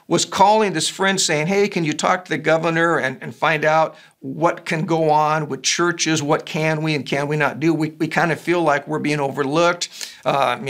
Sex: male